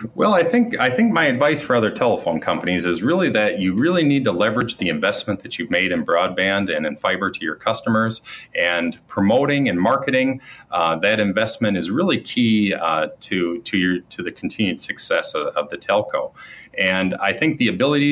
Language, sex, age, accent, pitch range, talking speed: English, male, 40-59, American, 95-135 Hz, 195 wpm